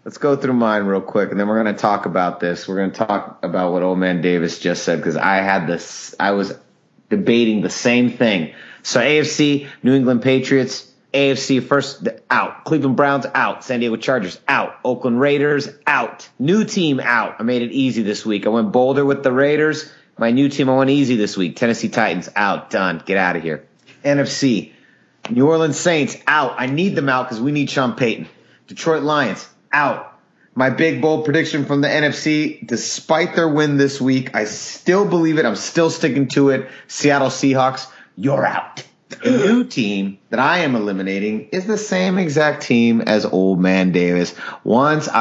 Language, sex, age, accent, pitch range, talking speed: English, male, 30-49, American, 110-150 Hz, 190 wpm